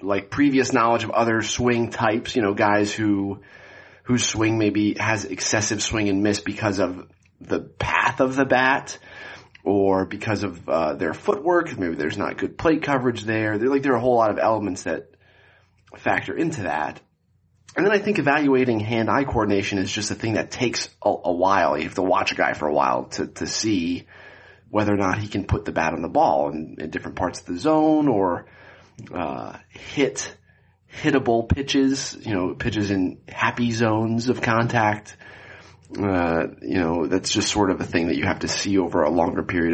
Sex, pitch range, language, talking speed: male, 100-130 Hz, English, 195 wpm